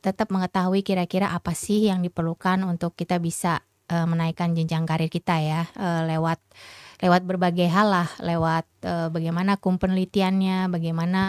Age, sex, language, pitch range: 20-39, female, Indonesian, 175-210 Hz